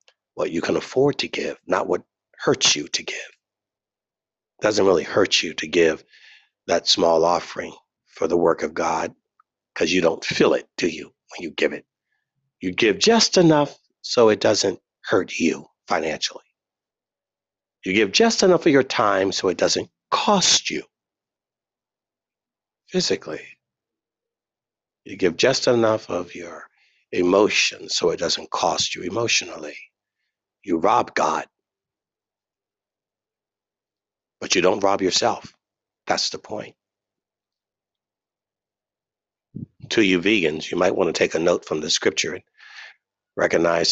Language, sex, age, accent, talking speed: English, male, 60-79, American, 135 wpm